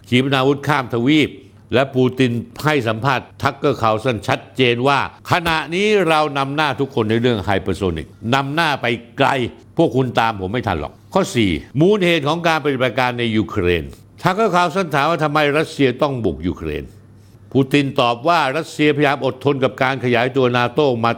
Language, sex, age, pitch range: Thai, male, 60-79, 115-145 Hz